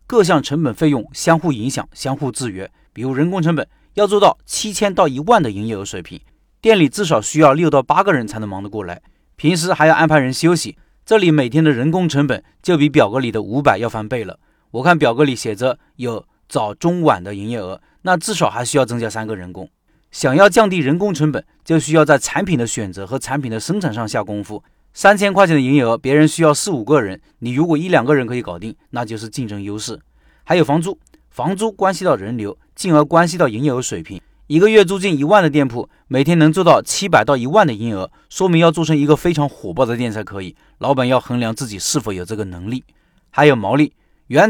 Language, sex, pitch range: Chinese, male, 115-160 Hz